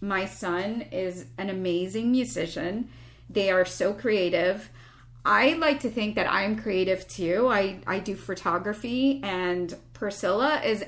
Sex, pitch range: female, 155-260 Hz